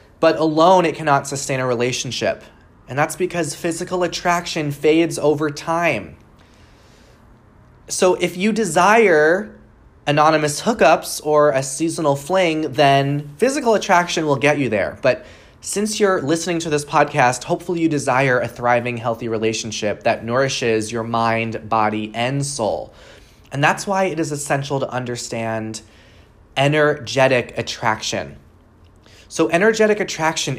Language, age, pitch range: English, 20-39, 120-165 Hz